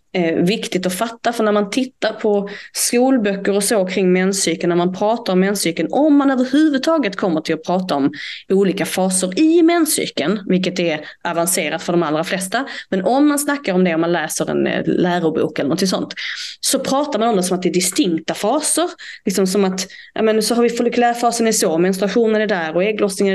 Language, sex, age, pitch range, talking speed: Swedish, female, 20-39, 185-240 Hz, 195 wpm